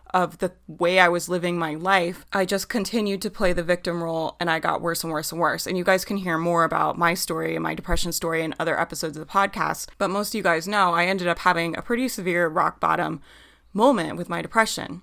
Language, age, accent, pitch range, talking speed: English, 20-39, American, 165-190 Hz, 250 wpm